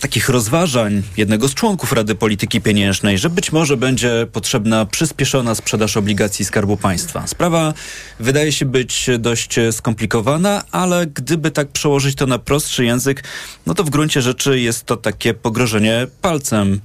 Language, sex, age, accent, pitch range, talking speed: Polish, male, 30-49, native, 110-140 Hz, 150 wpm